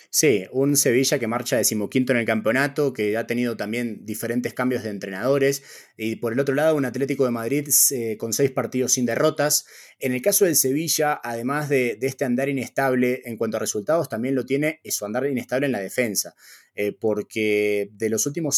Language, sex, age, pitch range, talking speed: Spanish, male, 20-39, 115-140 Hz, 195 wpm